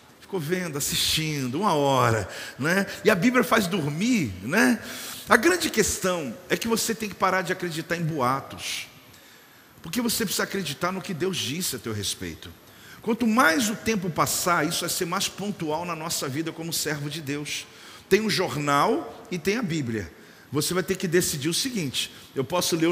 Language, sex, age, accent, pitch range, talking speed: Portuguese, male, 50-69, Brazilian, 150-220 Hz, 180 wpm